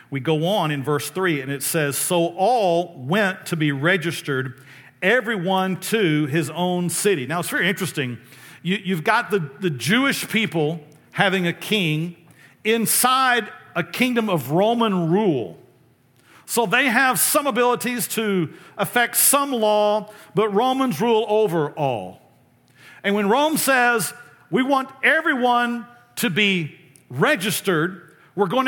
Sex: male